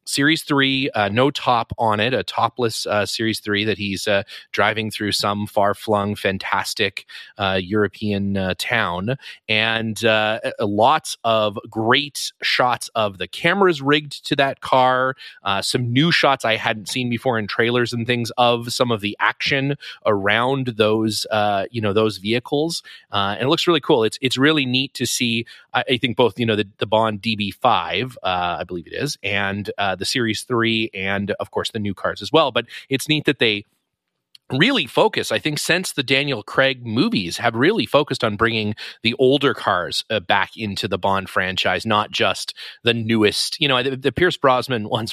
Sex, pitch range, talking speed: male, 105-130 Hz, 190 wpm